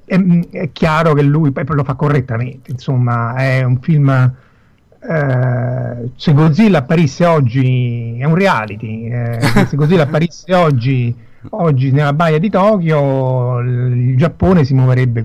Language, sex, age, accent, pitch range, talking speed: Italian, male, 50-69, native, 130-165 Hz, 130 wpm